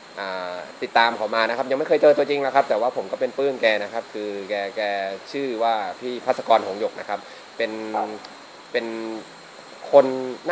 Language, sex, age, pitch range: Thai, male, 20-39, 105-135 Hz